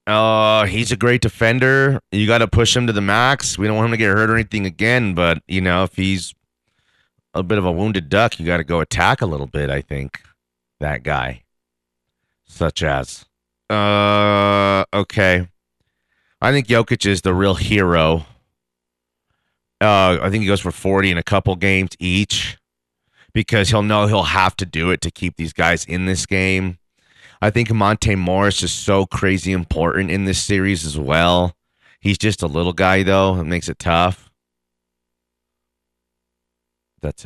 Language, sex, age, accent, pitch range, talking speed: English, male, 30-49, American, 75-105 Hz, 175 wpm